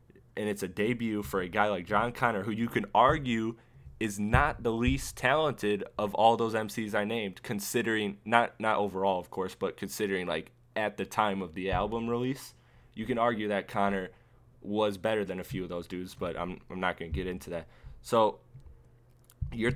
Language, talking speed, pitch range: English, 195 wpm, 95-120 Hz